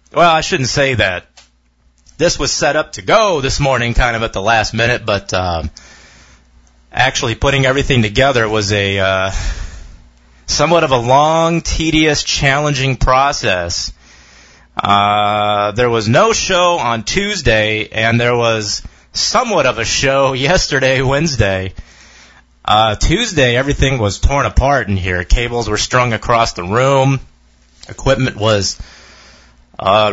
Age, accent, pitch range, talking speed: 30-49, American, 85-135 Hz, 135 wpm